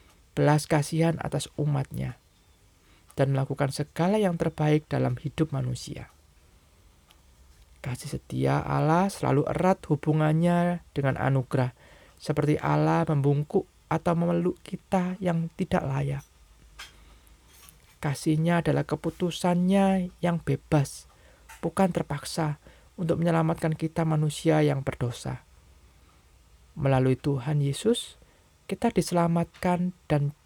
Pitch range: 130-170 Hz